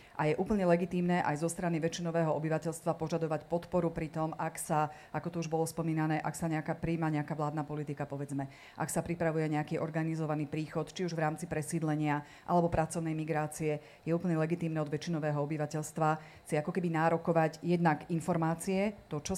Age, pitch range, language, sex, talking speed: 40-59, 155-175 Hz, Slovak, female, 175 wpm